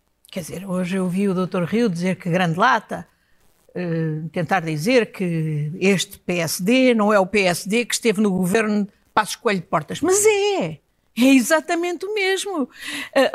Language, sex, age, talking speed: Portuguese, female, 50-69, 165 wpm